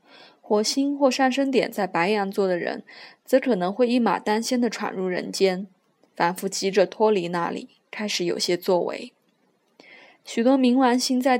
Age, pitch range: 20-39, 195-250 Hz